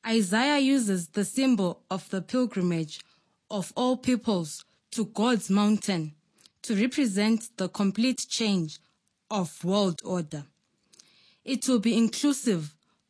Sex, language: female, English